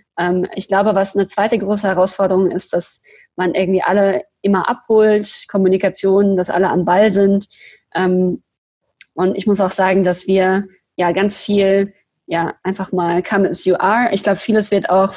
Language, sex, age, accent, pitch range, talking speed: German, female, 20-39, German, 185-205 Hz, 165 wpm